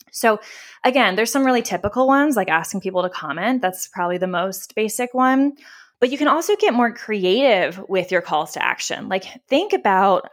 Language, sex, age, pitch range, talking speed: English, female, 20-39, 185-245 Hz, 190 wpm